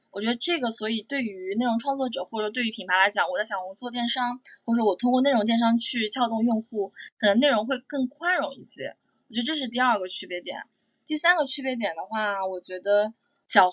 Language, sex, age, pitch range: Chinese, female, 20-39, 205-270 Hz